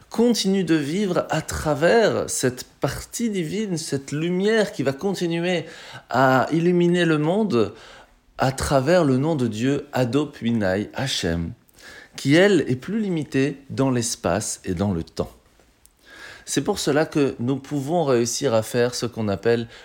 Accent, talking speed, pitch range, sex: French, 150 wpm, 115-170 Hz, male